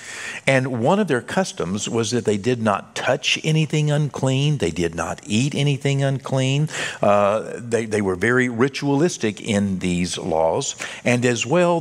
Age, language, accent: 50-69, English, American